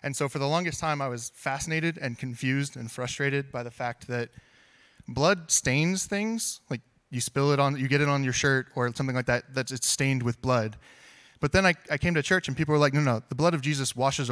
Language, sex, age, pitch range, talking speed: English, male, 20-39, 120-150 Hz, 245 wpm